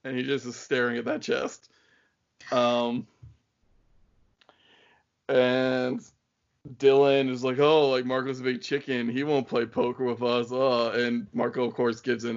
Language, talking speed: English, 150 wpm